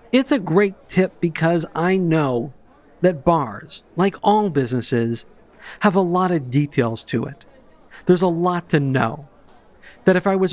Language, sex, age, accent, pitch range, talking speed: English, male, 50-69, American, 135-180 Hz, 160 wpm